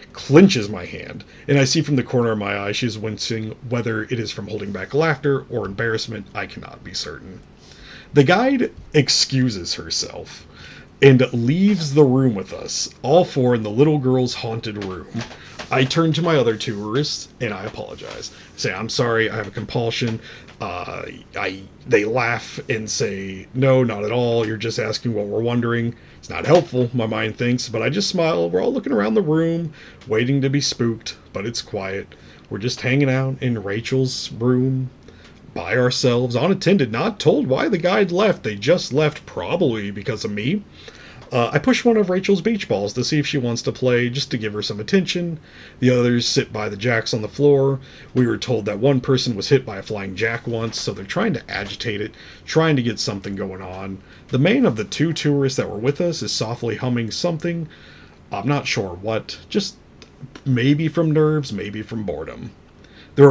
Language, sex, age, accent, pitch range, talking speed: English, male, 40-59, American, 110-140 Hz, 195 wpm